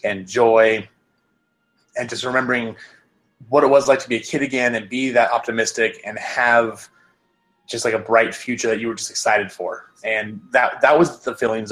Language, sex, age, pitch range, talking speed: English, male, 30-49, 110-125 Hz, 190 wpm